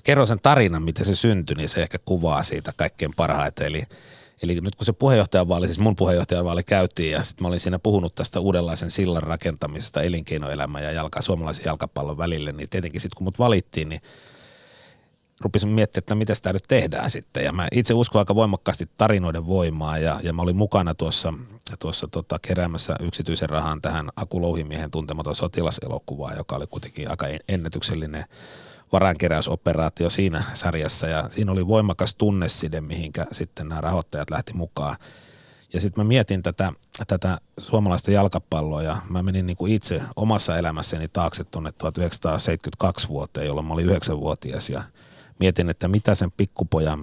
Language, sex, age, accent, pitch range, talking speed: Finnish, male, 30-49, native, 80-100 Hz, 160 wpm